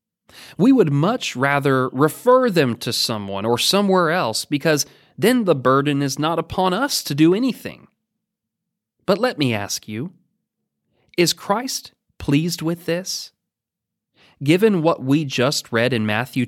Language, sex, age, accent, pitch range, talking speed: English, male, 30-49, American, 125-185 Hz, 140 wpm